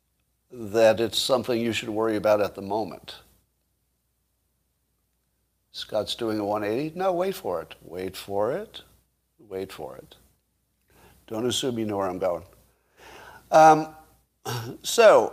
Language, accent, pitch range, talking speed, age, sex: English, American, 105-135 Hz, 130 wpm, 50-69, male